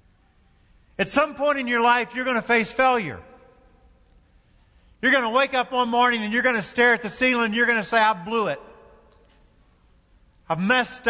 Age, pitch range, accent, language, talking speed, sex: 50-69, 165-235 Hz, American, English, 195 wpm, male